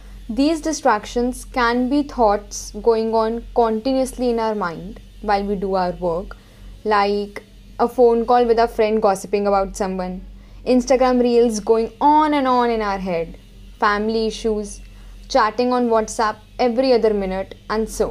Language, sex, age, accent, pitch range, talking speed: English, female, 10-29, Indian, 205-275 Hz, 150 wpm